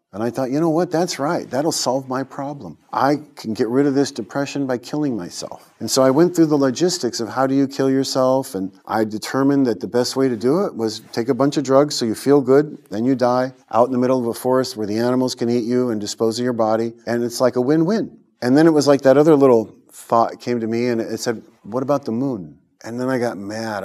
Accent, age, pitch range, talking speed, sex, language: American, 40-59, 110-140 Hz, 265 wpm, male, English